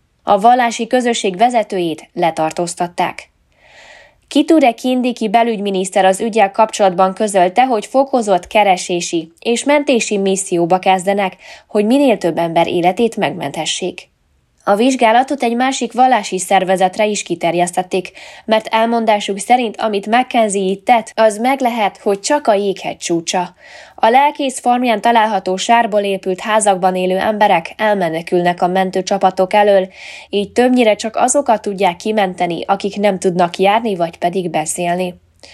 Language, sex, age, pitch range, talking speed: Hungarian, female, 10-29, 180-225 Hz, 125 wpm